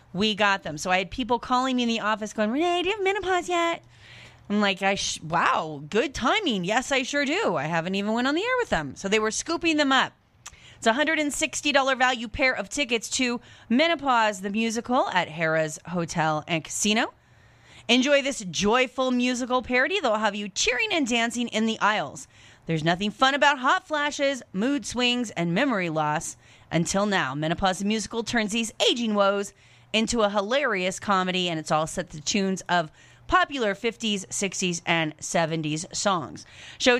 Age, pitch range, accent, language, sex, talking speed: 30-49, 180-260 Hz, American, English, female, 185 wpm